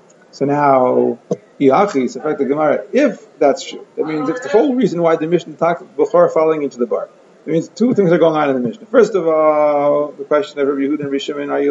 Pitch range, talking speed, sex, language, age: 145-195 Hz, 205 wpm, male, English, 30-49